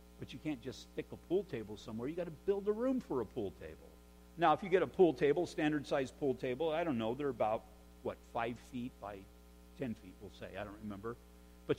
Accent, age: American, 50-69